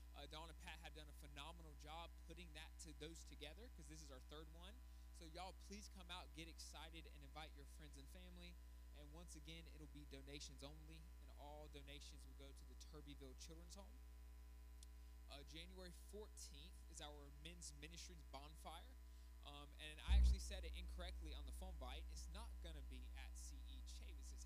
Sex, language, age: male, English, 20-39